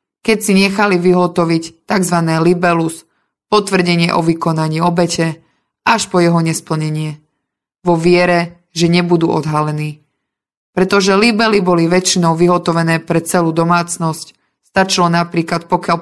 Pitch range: 165-185 Hz